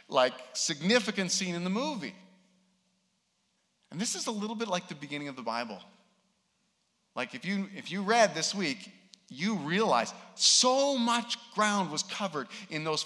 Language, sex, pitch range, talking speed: English, male, 145-215 Hz, 160 wpm